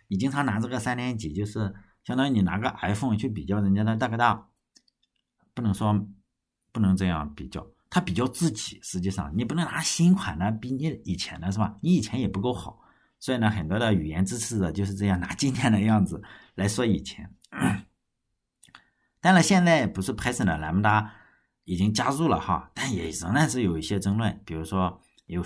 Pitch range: 95-125 Hz